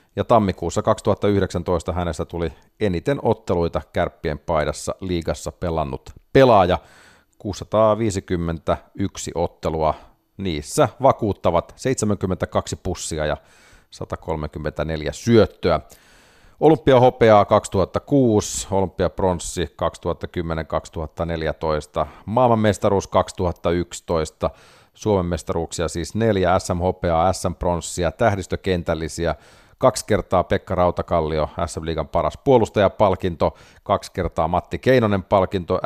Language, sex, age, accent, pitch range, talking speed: Finnish, male, 40-59, native, 85-105 Hz, 80 wpm